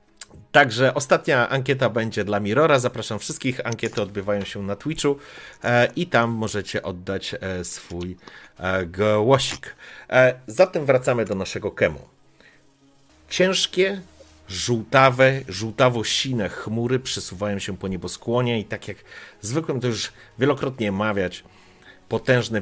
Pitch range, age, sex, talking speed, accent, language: 90-120 Hz, 40-59, male, 110 wpm, native, Polish